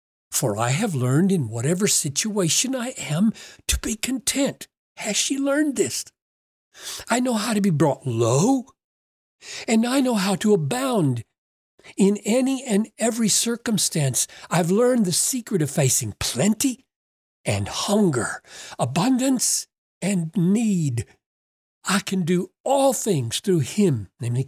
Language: English